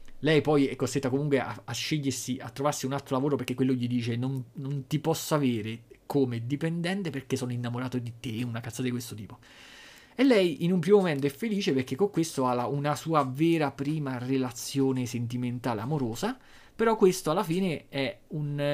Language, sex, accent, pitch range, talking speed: Italian, male, native, 125-155 Hz, 190 wpm